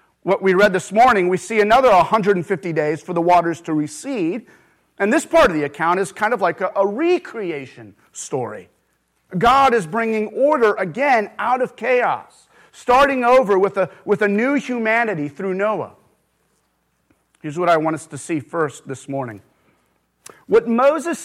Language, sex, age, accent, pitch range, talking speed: English, male, 30-49, American, 170-225 Hz, 165 wpm